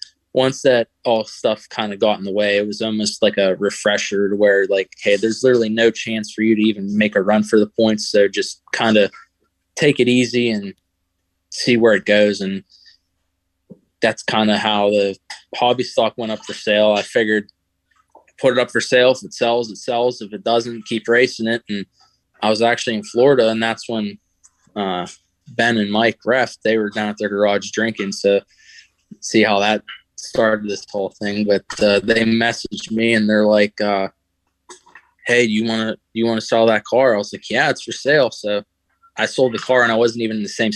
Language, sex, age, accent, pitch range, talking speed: English, male, 20-39, American, 100-115 Hz, 210 wpm